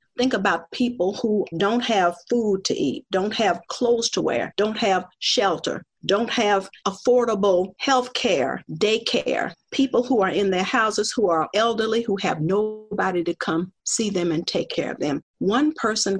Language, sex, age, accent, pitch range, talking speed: English, female, 50-69, American, 190-245 Hz, 170 wpm